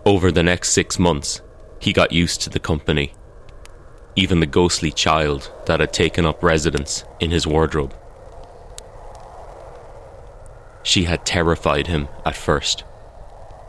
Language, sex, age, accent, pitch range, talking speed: English, male, 30-49, Irish, 75-90 Hz, 125 wpm